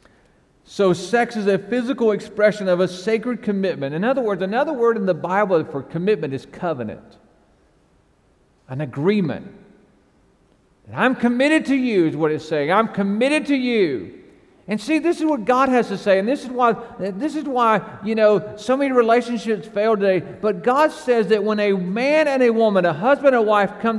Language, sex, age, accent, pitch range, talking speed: English, male, 50-69, American, 175-255 Hz, 190 wpm